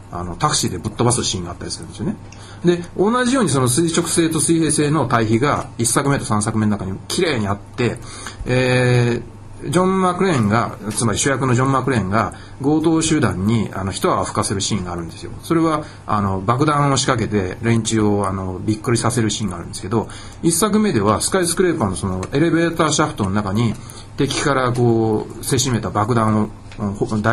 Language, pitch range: Japanese, 105-155 Hz